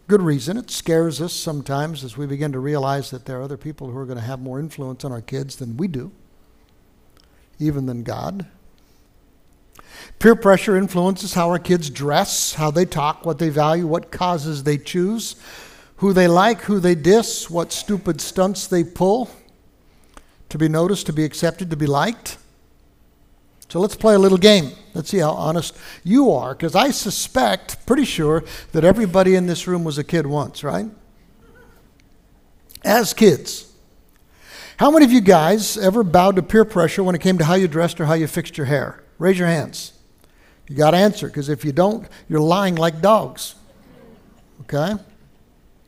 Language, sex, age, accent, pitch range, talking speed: English, male, 60-79, American, 150-195 Hz, 180 wpm